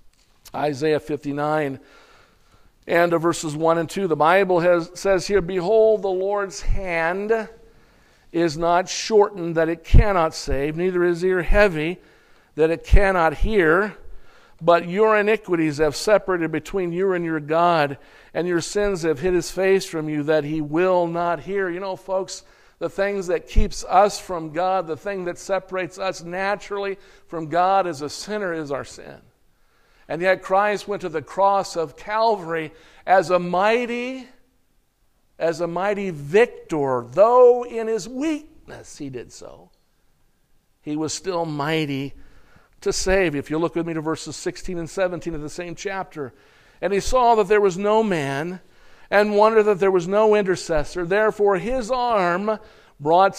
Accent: American